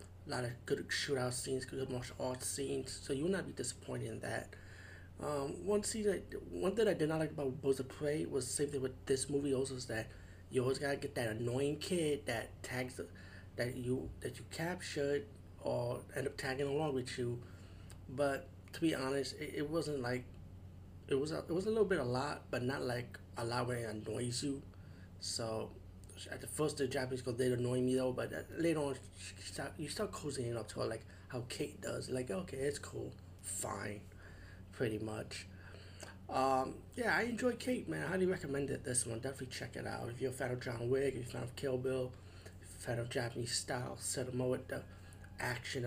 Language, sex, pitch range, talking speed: English, male, 95-135 Hz, 215 wpm